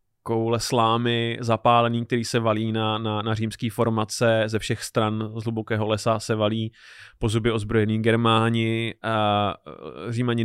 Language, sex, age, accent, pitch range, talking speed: Czech, male, 20-39, native, 105-115 Hz, 140 wpm